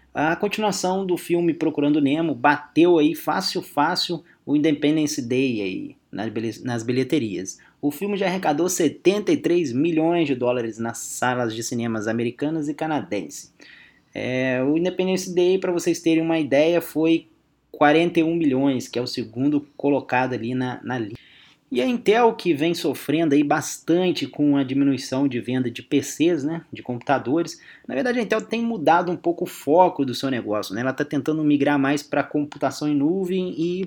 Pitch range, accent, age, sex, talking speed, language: 130-170 Hz, Brazilian, 20-39, male, 165 wpm, English